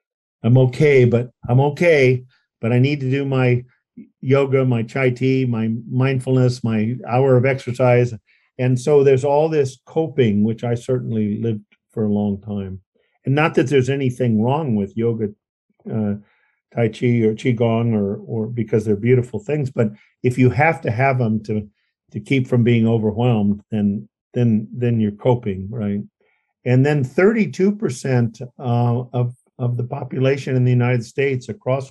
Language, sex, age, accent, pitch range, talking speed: English, male, 50-69, American, 115-135 Hz, 165 wpm